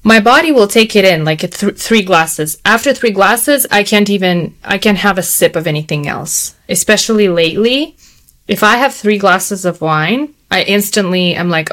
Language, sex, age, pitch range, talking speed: English, female, 20-39, 175-215 Hz, 190 wpm